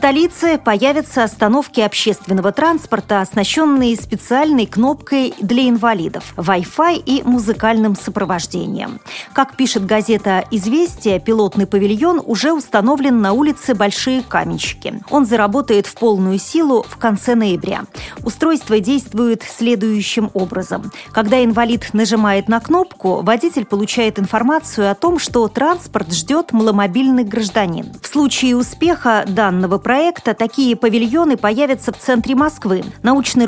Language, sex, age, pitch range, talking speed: Russian, female, 30-49, 200-255 Hz, 120 wpm